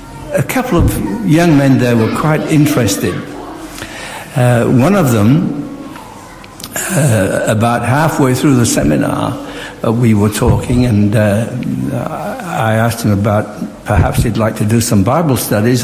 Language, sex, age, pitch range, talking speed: English, male, 60-79, 110-135 Hz, 140 wpm